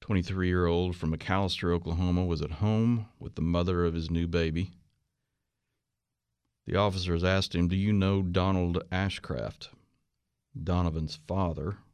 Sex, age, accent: male, 50-69, American